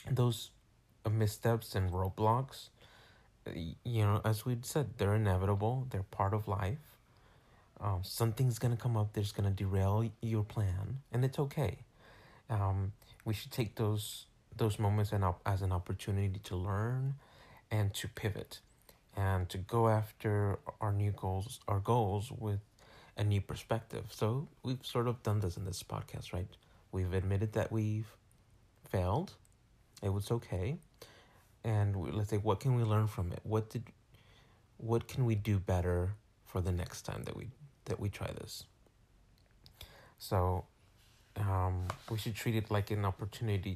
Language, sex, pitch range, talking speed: English, male, 100-115 Hz, 155 wpm